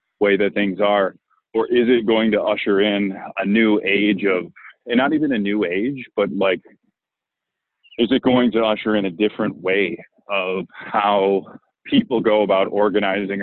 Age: 30-49